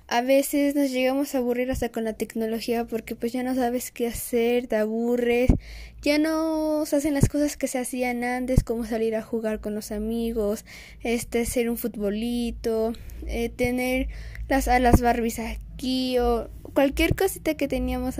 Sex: female